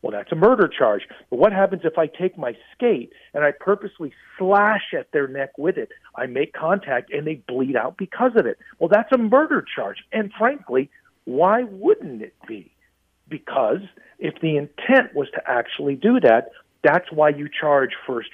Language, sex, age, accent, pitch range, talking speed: English, male, 50-69, American, 145-215 Hz, 185 wpm